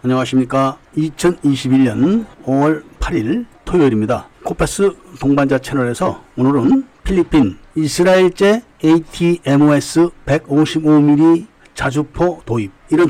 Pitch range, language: 130-170 Hz, Korean